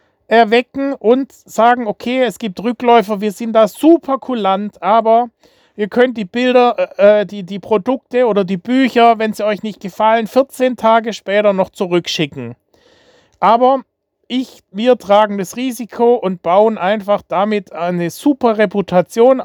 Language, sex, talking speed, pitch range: German, male, 145 wpm, 190-235 Hz